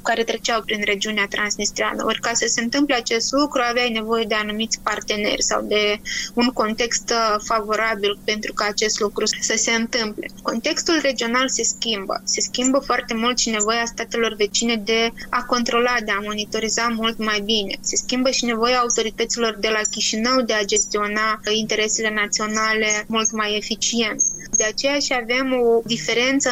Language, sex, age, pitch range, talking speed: Romanian, female, 20-39, 220-245 Hz, 165 wpm